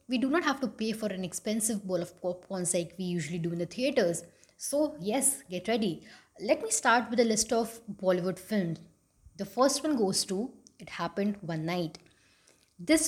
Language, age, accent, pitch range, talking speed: English, 20-39, Indian, 185-245 Hz, 195 wpm